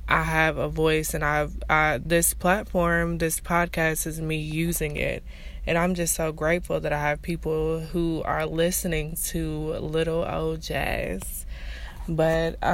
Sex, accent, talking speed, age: female, American, 150 wpm, 20-39